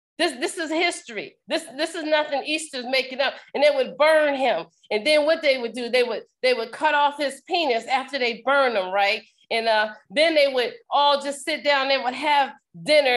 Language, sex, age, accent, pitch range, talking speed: English, female, 40-59, American, 250-300 Hz, 220 wpm